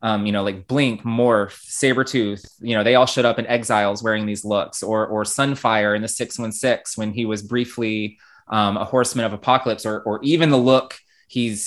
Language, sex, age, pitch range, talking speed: English, male, 20-39, 105-120 Hz, 200 wpm